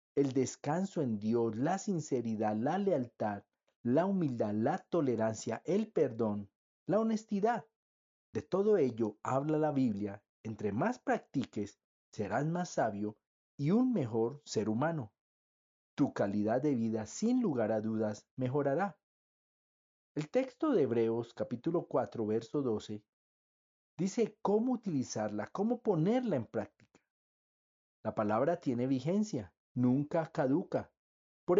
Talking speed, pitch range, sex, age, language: 120 wpm, 110-180 Hz, male, 40-59, Spanish